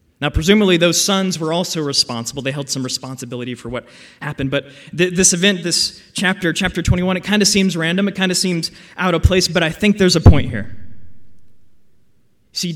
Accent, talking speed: American, 195 wpm